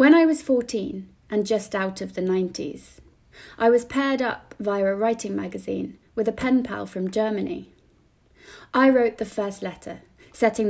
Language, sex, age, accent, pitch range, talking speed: English, female, 20-39, British, 190-235 Hz, 170 wpm